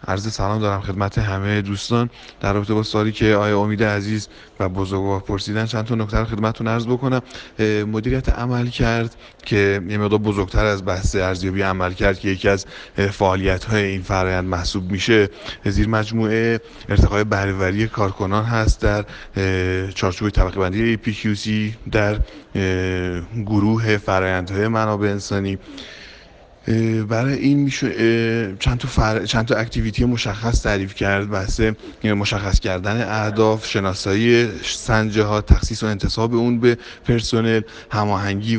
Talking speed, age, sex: 130 wpm, 30-49, male